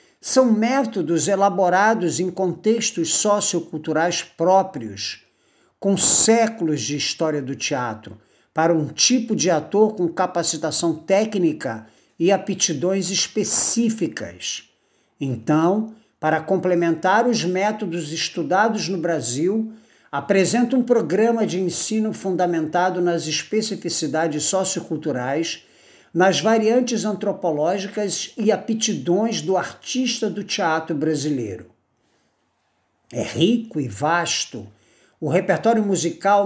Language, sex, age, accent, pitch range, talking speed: Portuguese, male, 60-79, Brazilian, 160-210 Hz, 95 wpm